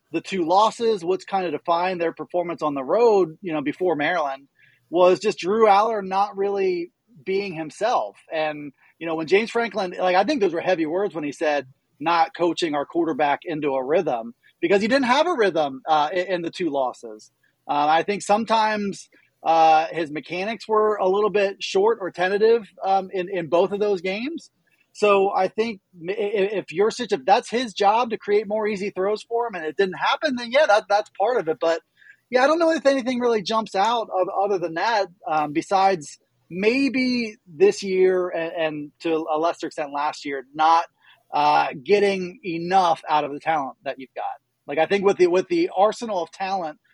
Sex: male